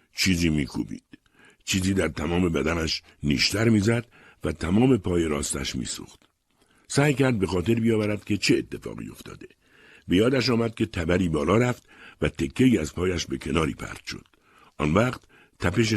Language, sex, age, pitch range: Persian, male, 60-79, 80-110 Hz